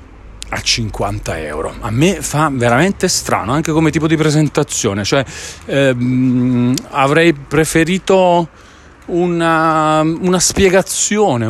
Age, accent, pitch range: 40-59, native, 110-150 Hz